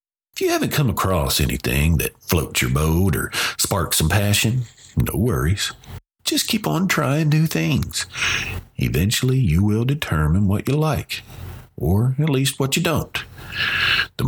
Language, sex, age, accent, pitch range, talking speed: English, male, 50-69, American, 80-120 Hz, 150 wpm